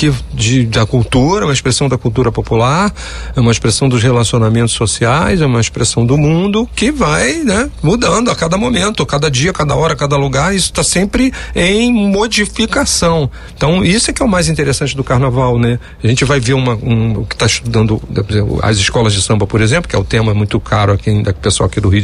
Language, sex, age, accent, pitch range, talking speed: Portuguese, male, 40-59, Brazilian, 115-185 Hz, 200 wpm